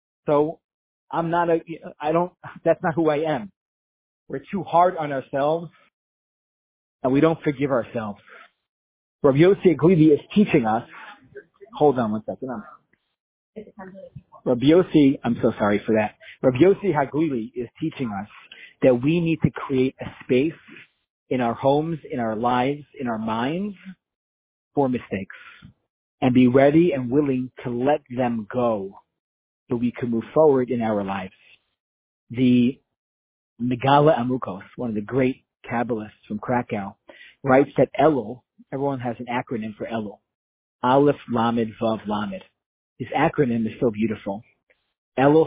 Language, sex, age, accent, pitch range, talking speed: English, male, 40-59, American, 115-160 Hz, 140 wpm